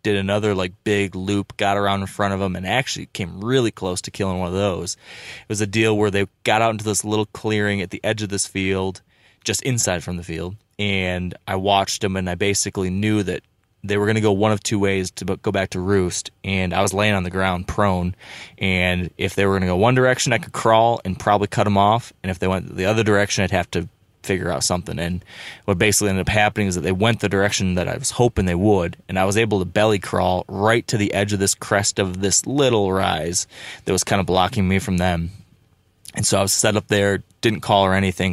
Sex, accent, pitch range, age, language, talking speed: male, American, 95-105 Hz, 20-39, English, 250 wpm